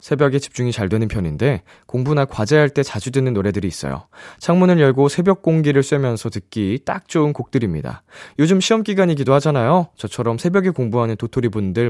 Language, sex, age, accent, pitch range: Korean, male, 20-39, native, 105-160 Hz